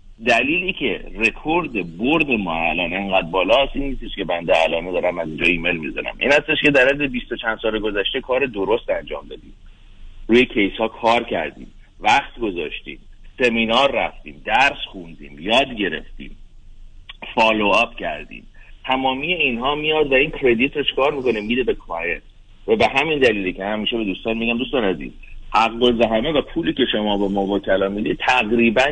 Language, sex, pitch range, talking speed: Persian, male, 105-135 Hz, 165 wpm